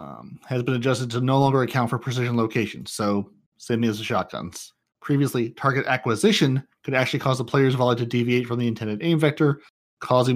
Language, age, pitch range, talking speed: English, 30-49, 115-135 Hz, 190 wpm